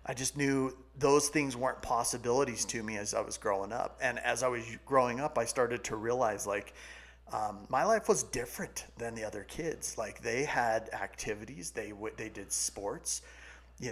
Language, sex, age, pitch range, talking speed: English, male, 30-49, 105-135 Hz, 185 wpm